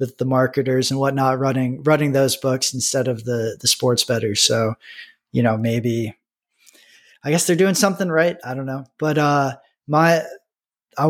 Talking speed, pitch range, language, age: 175 wpm, 130-155 Hz, English, 20-39